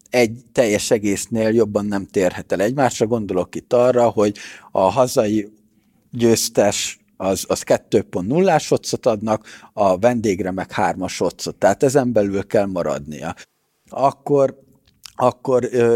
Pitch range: 105-125 Hz